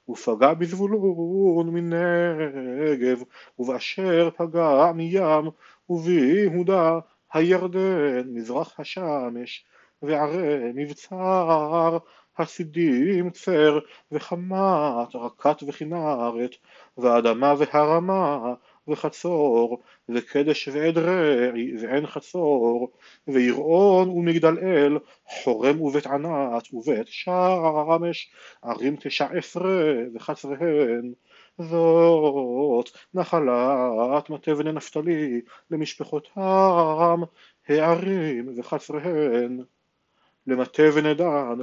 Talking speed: 70 wpm